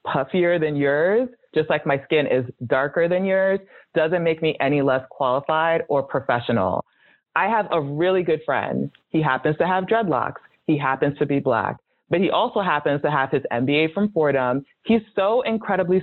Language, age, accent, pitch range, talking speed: English, 20-39, American, 140-175 Hz, 180 wpm